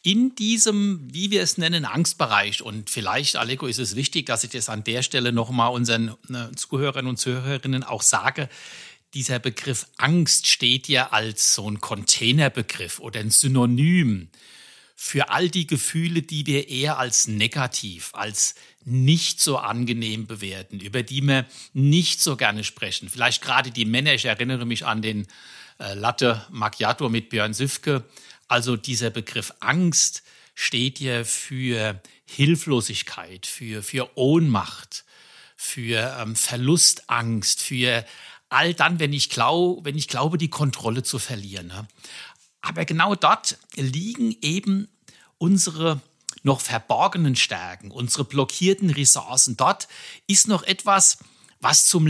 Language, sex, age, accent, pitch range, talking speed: German, male, 60-79, German, 115-155 Hz, 135 wpm